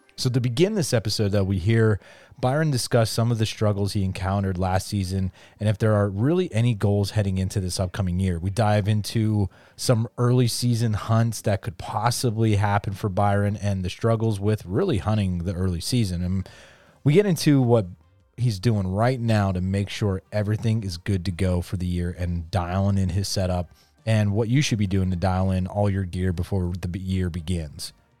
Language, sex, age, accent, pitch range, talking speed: English, male, 30-49, American, 95-115 Hz, 200 wpm